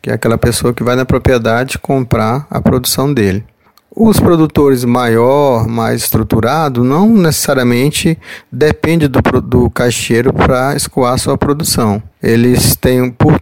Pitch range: 115-140 Hz